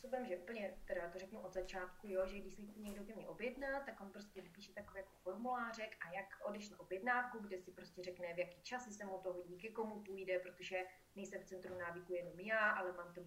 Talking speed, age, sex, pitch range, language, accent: 225 wpm, 30-49, female, 185-230 Hz, Czech, native